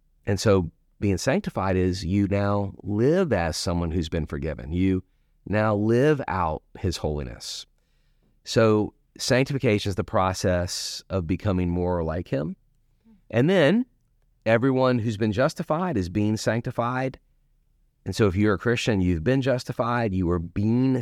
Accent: American